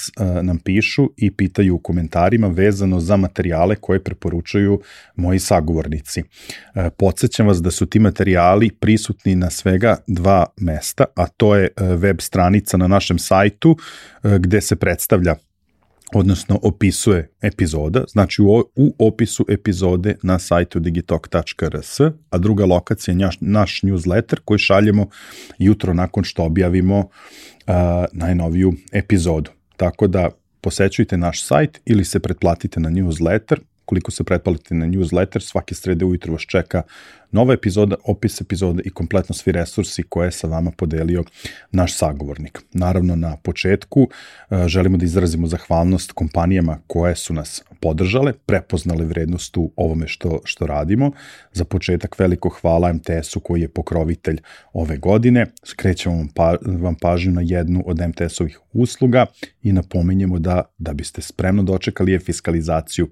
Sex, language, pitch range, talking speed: male, English, 85-100 Hz, 135 wpm